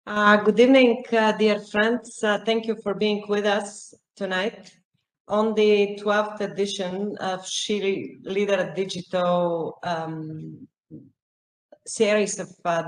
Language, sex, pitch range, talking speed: English, female, 180-210 Hz, 120 wpm